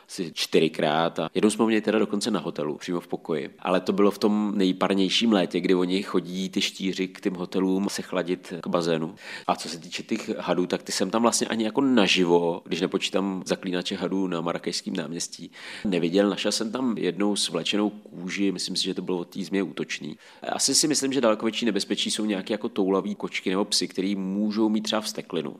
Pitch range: 90-105 Hz